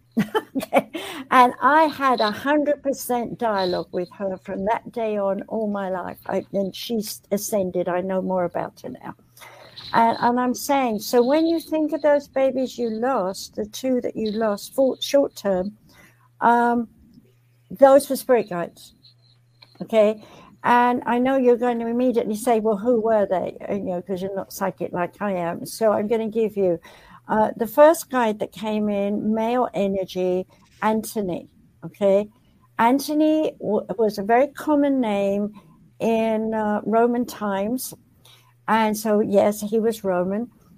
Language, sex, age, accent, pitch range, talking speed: English, female, 60-79, British, 195-250 Hz, 160 wpm